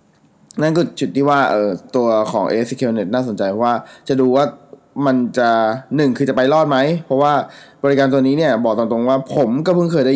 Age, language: 20-39, Thai